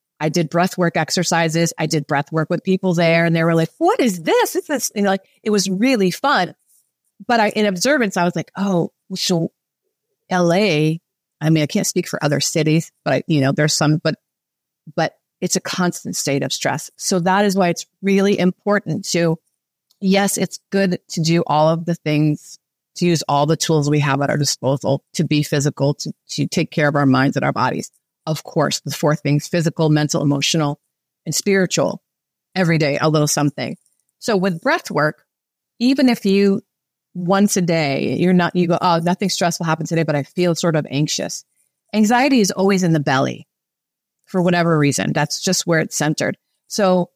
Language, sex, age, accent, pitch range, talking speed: English, female, 30-49, American, 155-195 Hz, 195 wpm